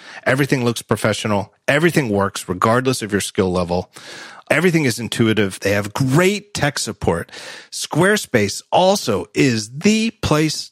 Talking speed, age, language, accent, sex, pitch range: 130 wpm, 40-59, English, American, male, 105-150 Hz